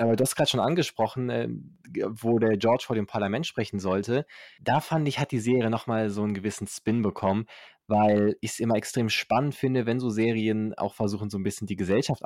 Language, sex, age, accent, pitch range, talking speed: German, male, 20-39, German, 105-130 Hz, 215 wpm